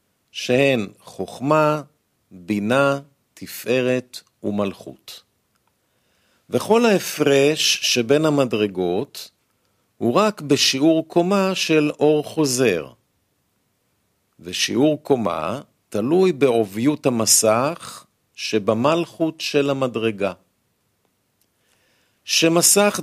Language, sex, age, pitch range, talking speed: Hebrew, male, 50-69, 110-150 Hz, 65 wpm